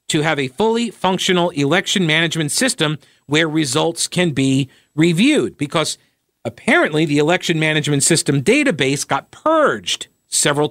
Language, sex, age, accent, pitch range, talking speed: English, male, 50-69, American, 135-185 Hz, 130 wpm